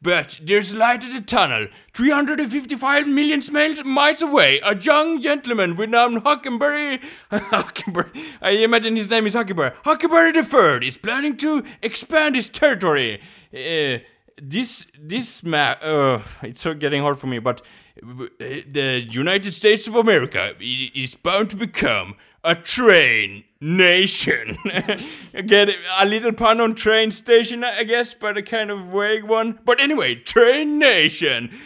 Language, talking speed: English, 150 wpm